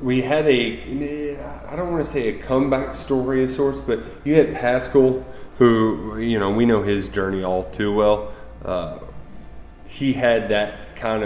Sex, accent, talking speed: male, American, 170 wpm